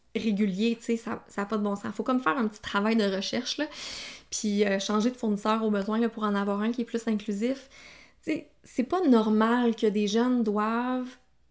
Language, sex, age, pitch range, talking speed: French, female, 20-39, 210-260 Hz, 230 wpm